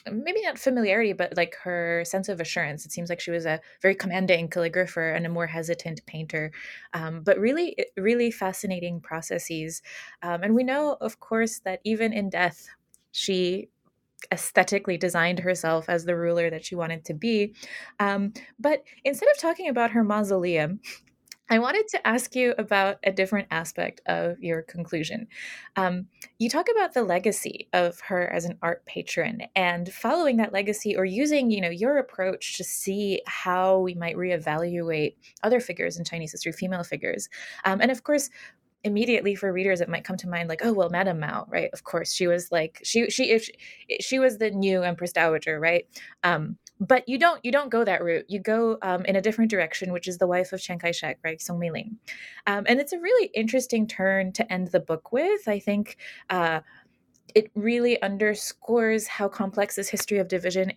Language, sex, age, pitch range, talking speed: English, female, 20-39, 175-225 Hz, 190 wpm